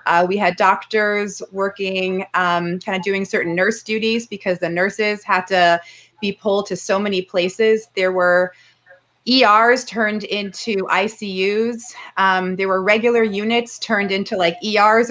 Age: 30-49